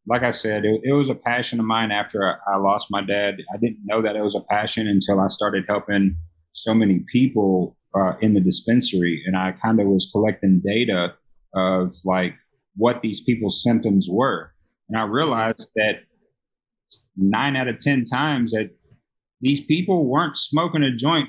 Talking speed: 185 wpm